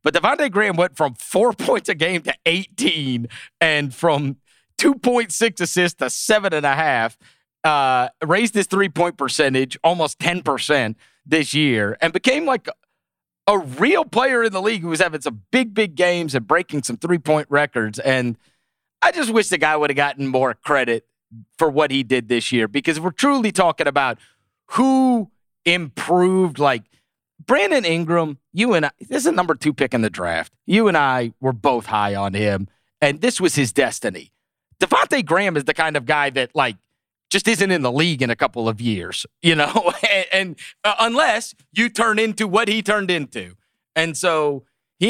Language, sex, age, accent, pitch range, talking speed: English, male, 30-49, American, 130-205 Hz, 180 wpm